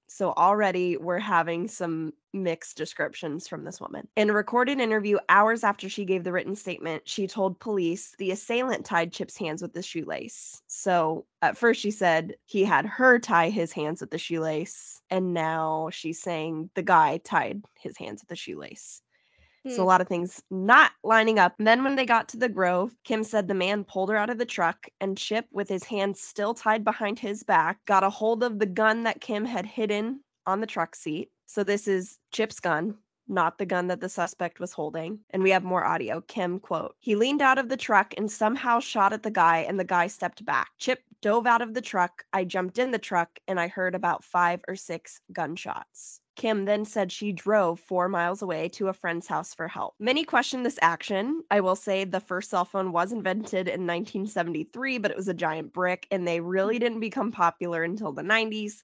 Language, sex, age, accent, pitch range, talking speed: English, female, 10-29, American, 175-215 Hz, 210 wpm